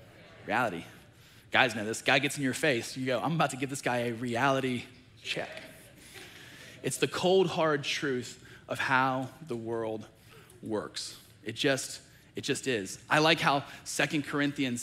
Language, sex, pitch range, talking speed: English, male, 130-170 Hz, 160 wpm